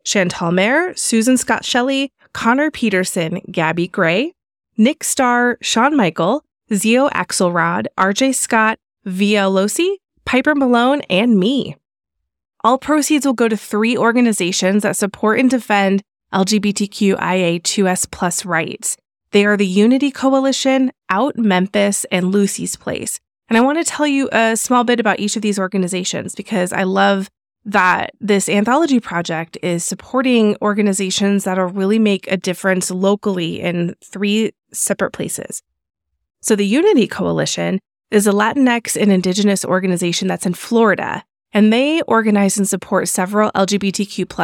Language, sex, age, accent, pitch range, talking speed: English, female, 20-39, American, 185-235 Hz, 140 wpm